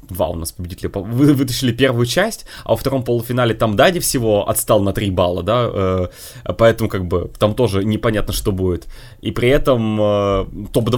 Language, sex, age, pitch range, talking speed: Russian, male, 20-39, 110-160 Hz, 185 wpm